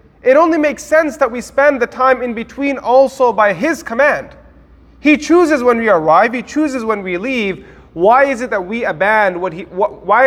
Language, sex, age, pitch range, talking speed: English, male, 30-49, 165-235 Hz, 200 wpm